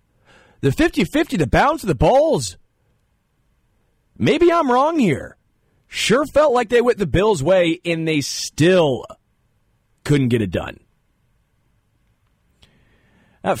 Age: 30-49